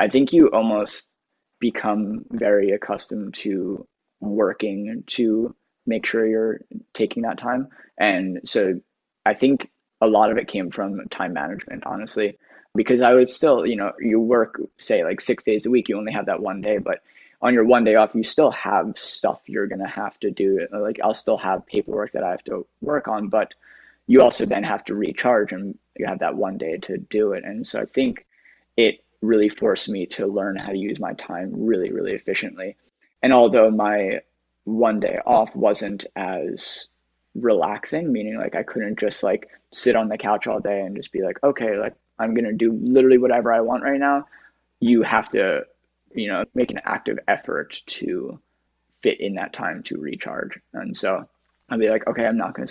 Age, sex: 20-39, male